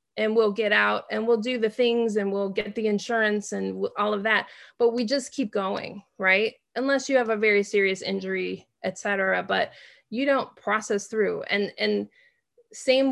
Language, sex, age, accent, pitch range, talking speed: English, female, 20-39, American, 200-235 Hz, 190 wpm